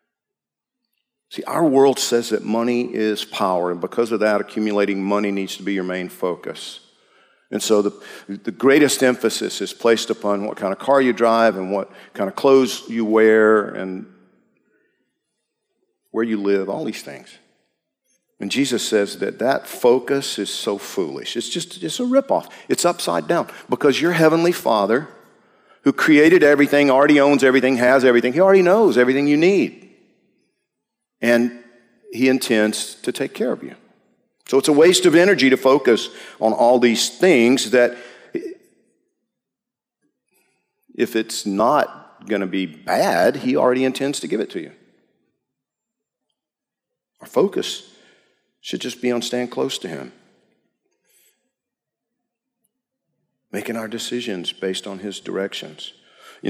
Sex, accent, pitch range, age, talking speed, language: male, American, 105-145 Hz, 50-69, 145 wpm, English